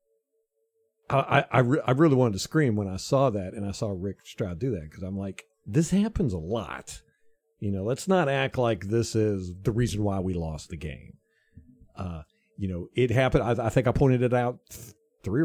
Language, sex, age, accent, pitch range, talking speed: English, male, 50-69, American, 105-160 Hz, 200 wpm